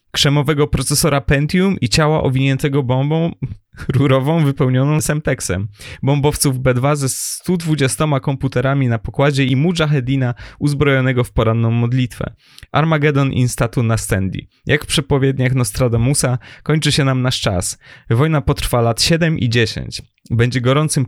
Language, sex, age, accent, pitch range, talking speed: Polish, male, 20-39, native, 120-145 Hz, 120 wpm